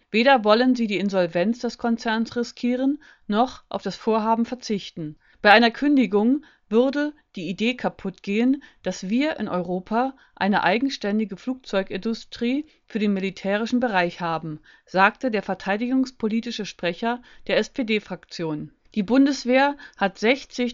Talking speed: 125 wpm